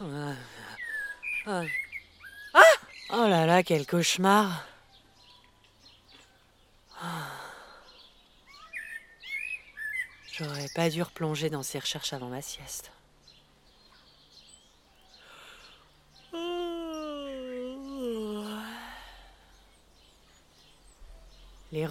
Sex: female